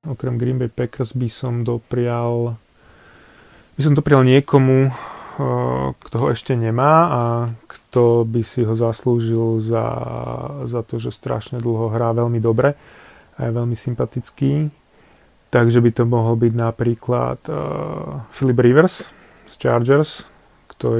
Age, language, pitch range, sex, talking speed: 30-49, Slovak, 115-130 Hz, male, 130 wpm